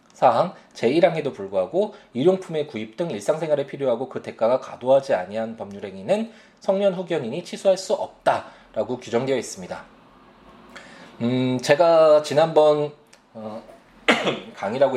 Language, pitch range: Korean, 115-190 Hz